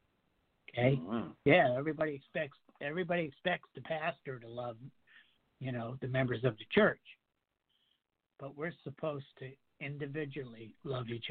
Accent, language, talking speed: American, English, 125 wpm